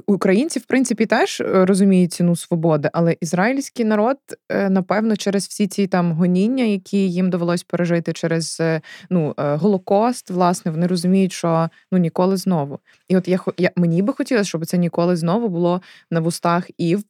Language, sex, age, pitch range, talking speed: Ukrainian, female, 20-39, 170-210 Hz, 160 wpm